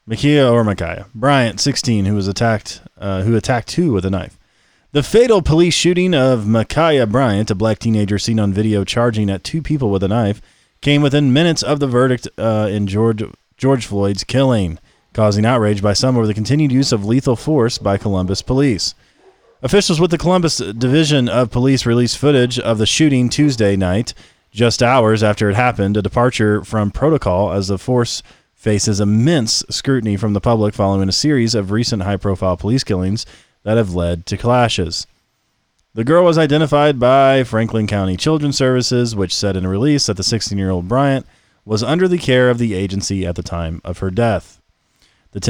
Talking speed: 180 wpm